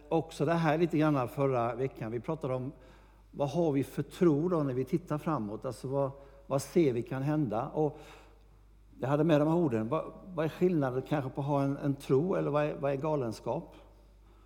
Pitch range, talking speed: 110-150 Hz, 215 wpm